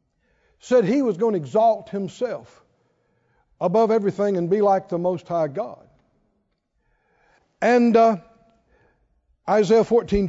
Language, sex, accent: English, male, American